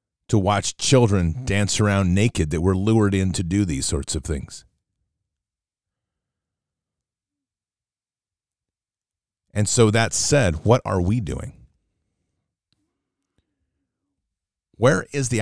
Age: 40-59